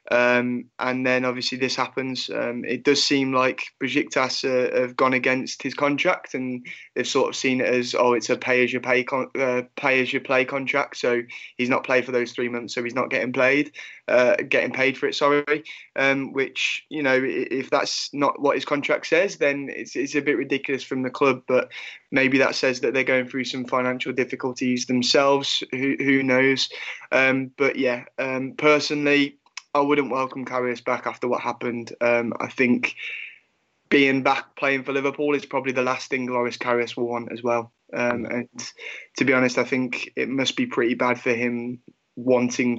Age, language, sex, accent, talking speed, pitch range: 20-39, English, male, British, 195 wpm, 120-135 Hz